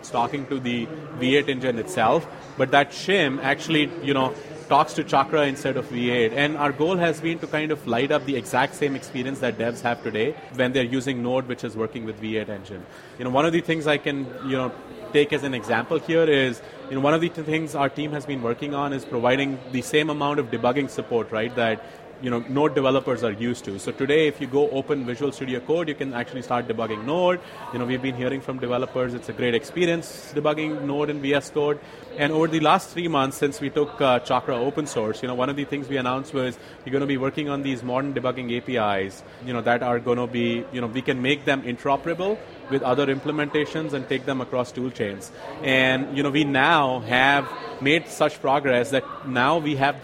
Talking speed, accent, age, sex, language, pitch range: 225 wpm, Indian, 30-49, male, English, 125-150 Hz